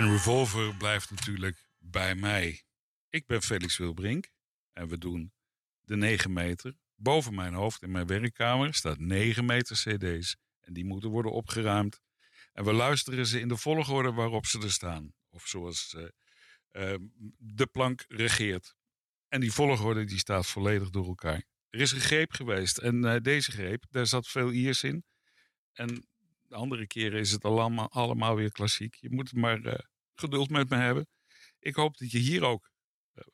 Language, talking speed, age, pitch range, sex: Dutch, 170 wpm, 60-79, 105-125 Hz, male